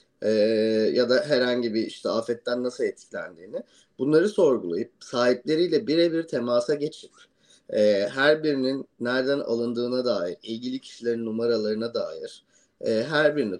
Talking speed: 125 wpm